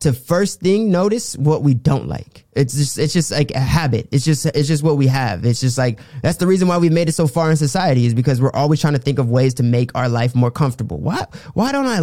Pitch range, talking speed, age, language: 135-175 Hz, 275 wpm, 20-39, English